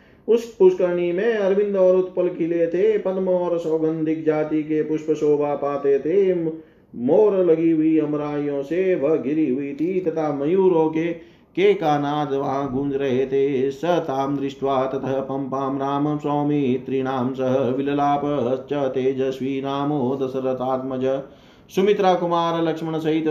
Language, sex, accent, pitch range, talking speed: Hindi, male, native, 130-155 Hz, 115 wpm